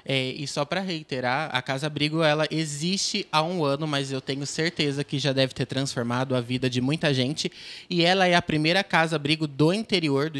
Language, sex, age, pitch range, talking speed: Portuguese, male, 20-39, 135-165 Hz, 200 wpm